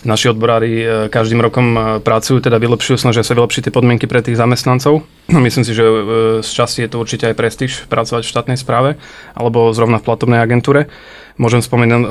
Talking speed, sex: 180 wpm, male